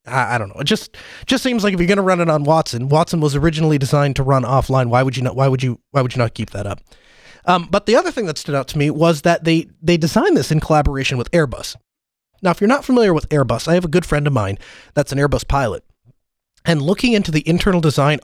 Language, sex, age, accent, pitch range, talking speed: English, male, 30-49, American, 140-185 Hz, 265 wpm